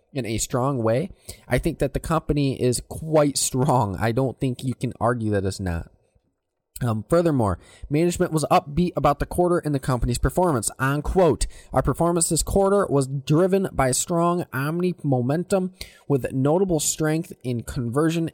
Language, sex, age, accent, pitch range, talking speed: English, male, 20-39, American, 115-150 Hz, 160 wpm